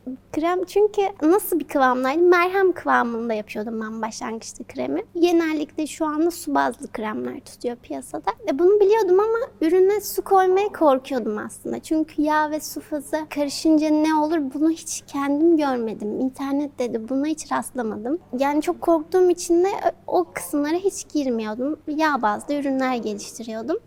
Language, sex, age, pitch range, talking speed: Turkish, female, 30-49, 255-335 Hz, 145 wpm